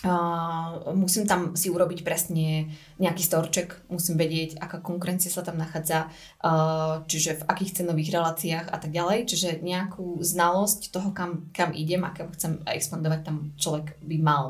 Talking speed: 160 wpm